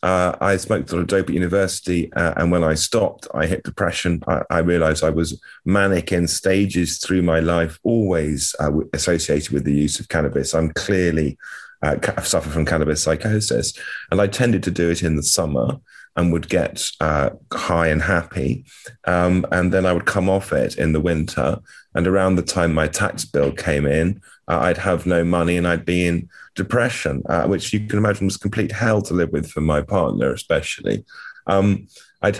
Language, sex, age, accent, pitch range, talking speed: English, male, 30-49, British, 80-95 Hz, 200 wpm